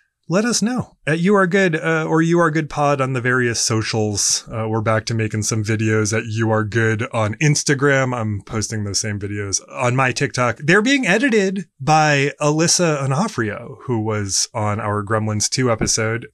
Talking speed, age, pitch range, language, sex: 185 wpm, 20-39, 110-160 Hz, English, male